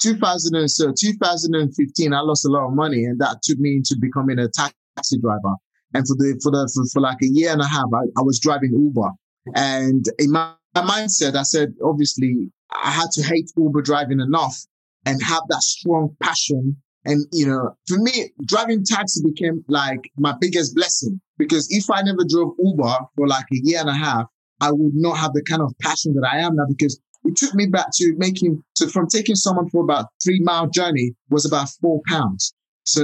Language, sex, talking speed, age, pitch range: English, male, 205 wpm, 20-39, 140-180 Hz